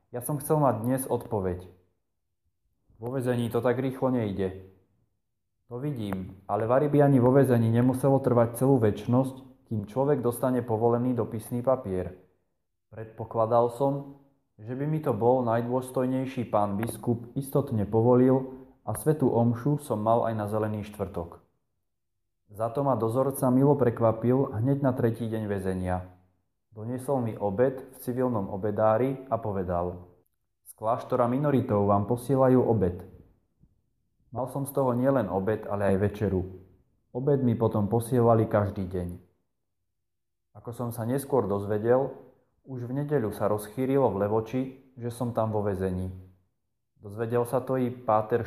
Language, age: Slovak, 20-39